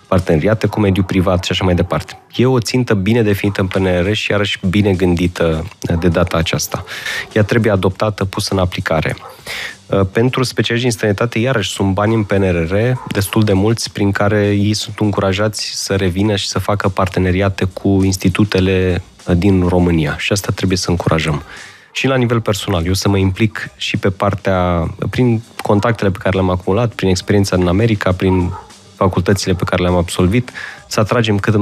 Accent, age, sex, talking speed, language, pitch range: native, 20-39, male, 170 wpm, Romanian, 95-105 Hz